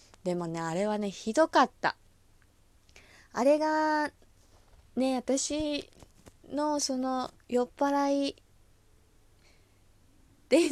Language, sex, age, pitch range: Japanese, female, 20-39, 155-260 Hz